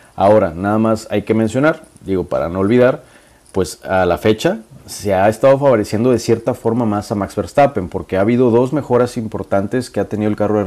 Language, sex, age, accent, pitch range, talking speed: Spanish, male, 30-49, Mexican, 95-125 Hz, 210 wpm